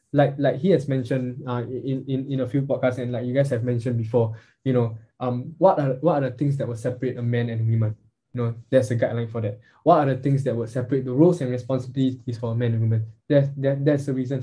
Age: 10-29